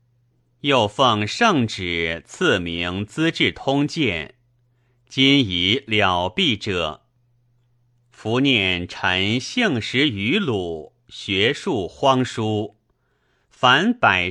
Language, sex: Chinese, male